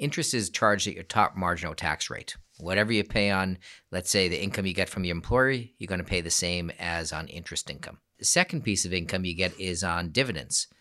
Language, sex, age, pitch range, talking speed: English, male, 40-59, 85-100 Hz, 235 wpm